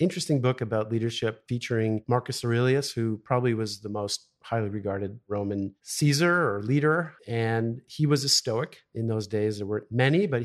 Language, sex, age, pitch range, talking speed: English, male, 50-69, 105-135 Hz, 170 wpm